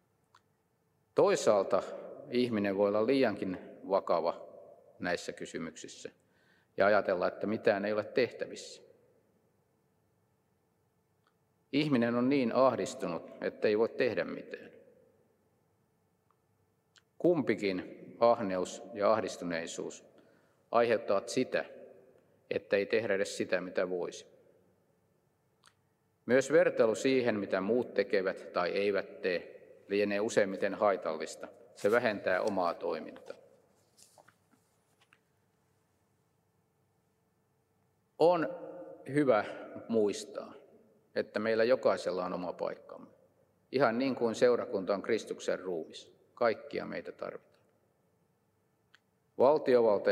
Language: Finnish